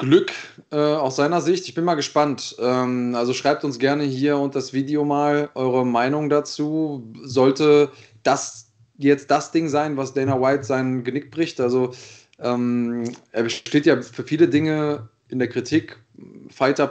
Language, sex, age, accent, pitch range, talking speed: German, male, 20-39, German, 120-145 Hz, 165 wpm